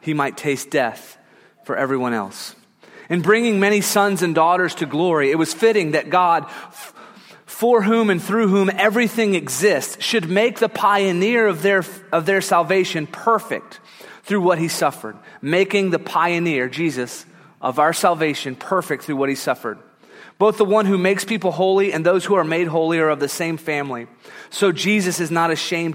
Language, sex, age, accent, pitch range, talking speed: English, male, 30-49, American, 135-185 Hz, 175 wpm